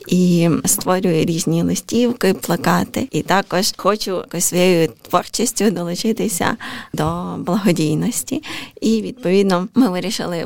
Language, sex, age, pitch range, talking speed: Ukrainian, female, 20-39, 165-200 Hz, 100 wpm